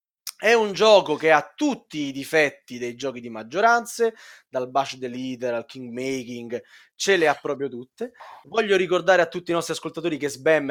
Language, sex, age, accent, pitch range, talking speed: Italian, male, 20-39, native, 135-175 Hz, 185 wpm